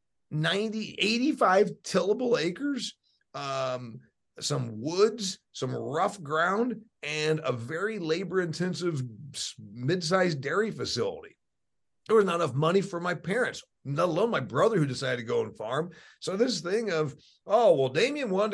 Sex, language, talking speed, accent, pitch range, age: male, English, 140 wpm, American, 145-205 Hz, 50-69